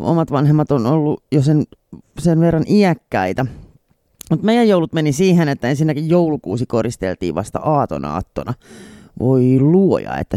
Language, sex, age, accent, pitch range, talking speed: Finnish, male, 30-49, native, 125-175 Hz, 140 wpm